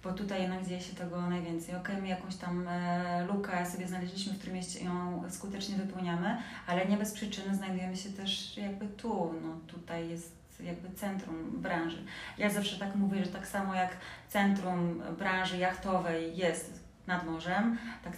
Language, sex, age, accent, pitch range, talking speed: Polish, female, 30-49, native, 175-195 Hz, 160 wpm